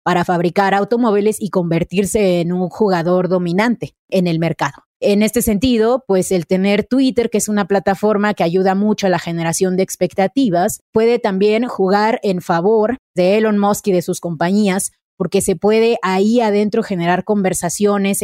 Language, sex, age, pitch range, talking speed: Spanish, female, 30-49, 185-225 Hz, 165 wpm